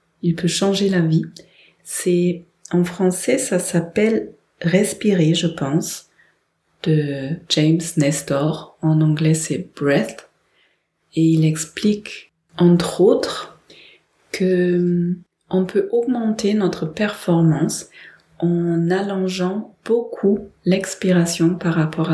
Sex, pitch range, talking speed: female, 165-195 Hz, 110 wpm